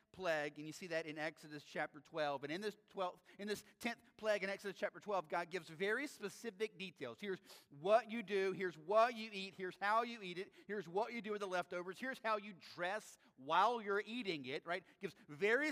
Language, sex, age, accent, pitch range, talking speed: English, male, 40-59, American, 175-220 Hz, 220 wpm